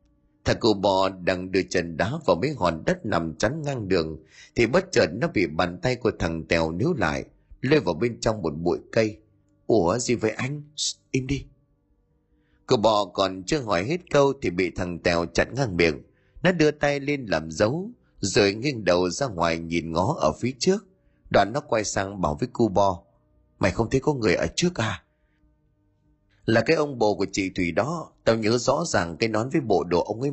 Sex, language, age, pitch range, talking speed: male, Vietnamese, 20-39, 90-135 Hz, 210 wpm